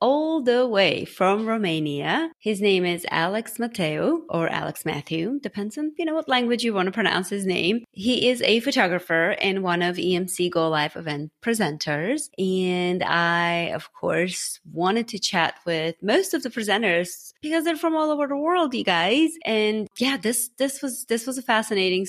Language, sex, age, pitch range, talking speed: English, female, 30-49, 170-230 Hz, 180 wpm